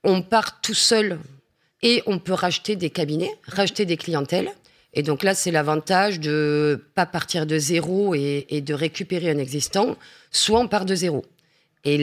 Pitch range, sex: 155-195 Hz, female